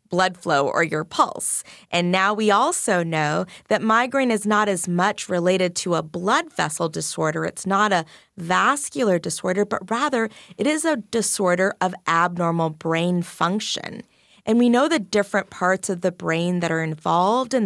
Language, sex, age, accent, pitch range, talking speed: English, female, 20-39, American, 175-225 Hz, 170 wpm